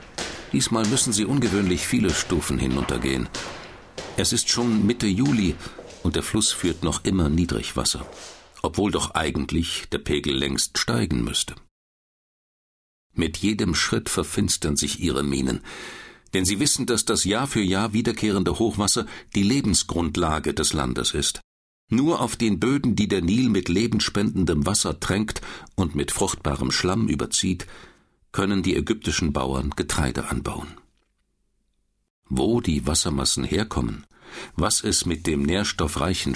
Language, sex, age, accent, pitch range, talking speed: German, male, 60-79, German, 70-110 Hz, 130 wpm